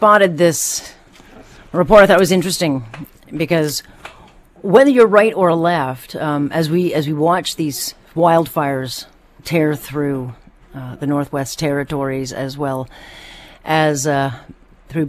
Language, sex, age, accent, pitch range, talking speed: English, female, 40-59, American, 140-175 Hz, 125 wpm